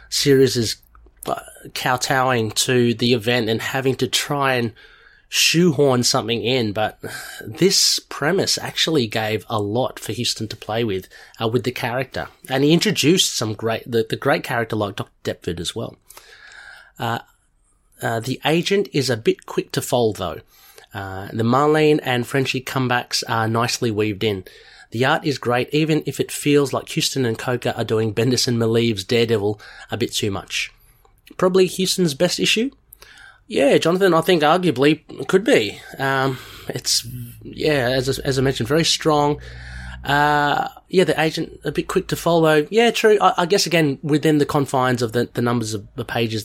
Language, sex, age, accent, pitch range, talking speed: English, male, 30-49, Australian, 115-150 Hz, 170 wpm